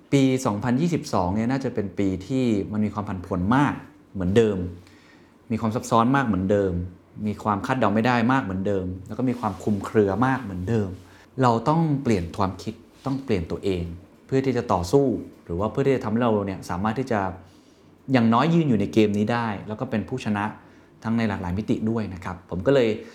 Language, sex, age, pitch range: Thai, male, 20-39, 95-125 Hz